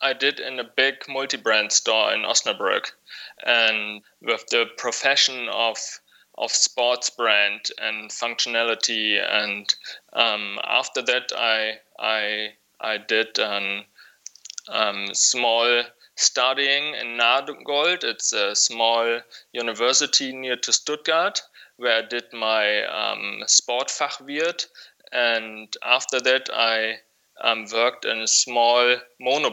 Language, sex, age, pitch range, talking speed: English, male, 20-39, 110-125 Hz, 115 wpm